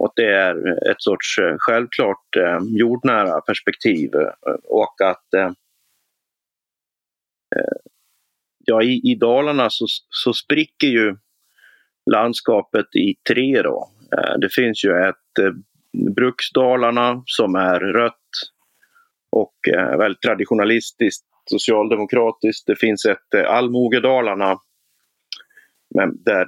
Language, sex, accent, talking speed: Swedish, male, native, 85 wpm